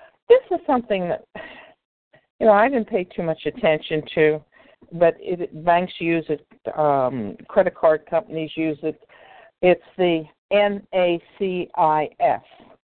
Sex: female